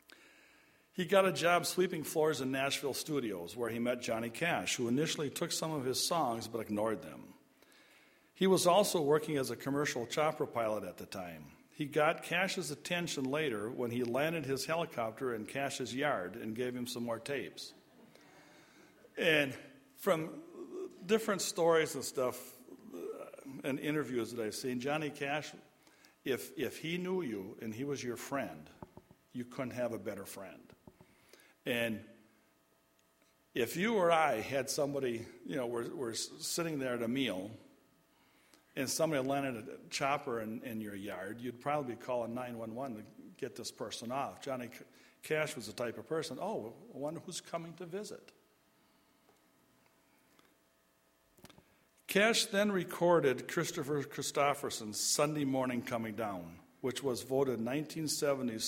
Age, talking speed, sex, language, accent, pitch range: 60-79, 150 wpm, male, English, American, 115-155 Hz